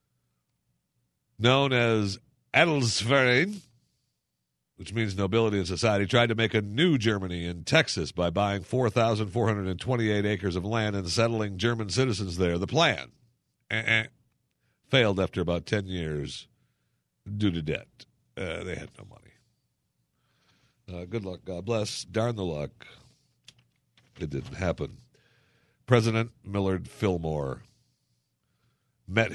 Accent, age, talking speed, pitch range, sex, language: American, 60-79, 120 wpm, 90-125 Hz, male, English